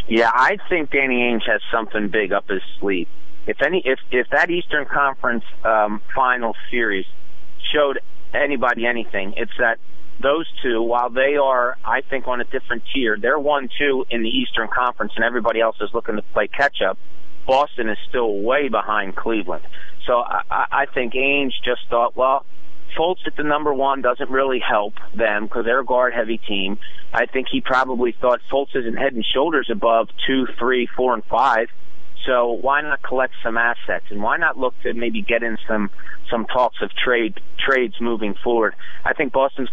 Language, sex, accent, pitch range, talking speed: English, male, American, 115-130 Hz, 185 wpm